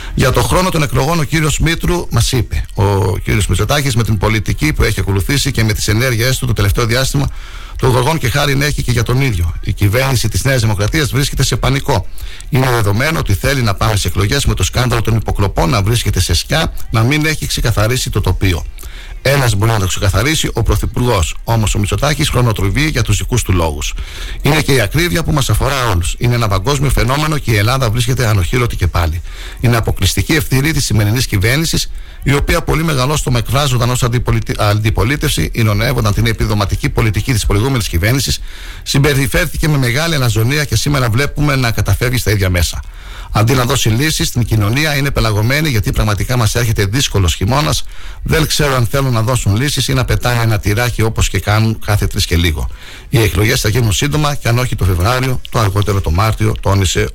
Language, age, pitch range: Greek, 60-79, 100-135 Hz